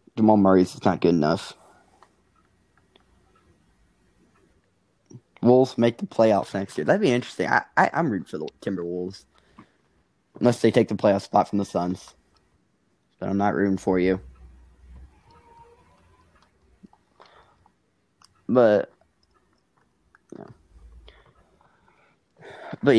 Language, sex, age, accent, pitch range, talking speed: English, male, 20-39, American, 95-120 Hz, 100 wpm